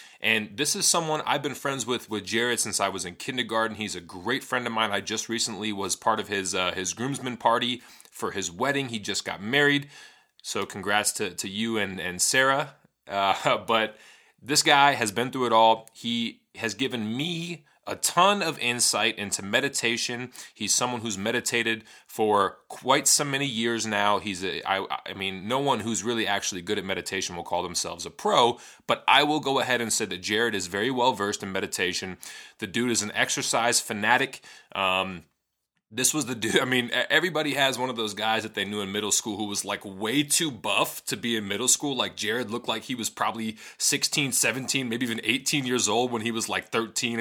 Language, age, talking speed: English, 30-49, 210 wpm